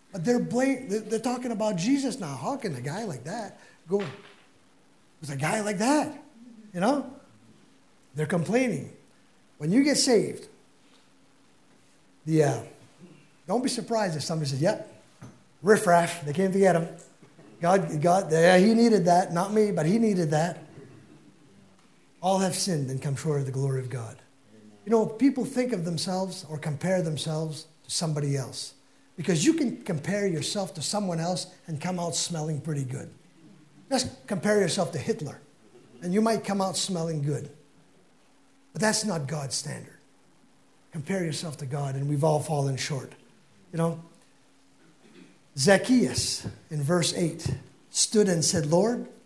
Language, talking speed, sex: English, 155 wpm, male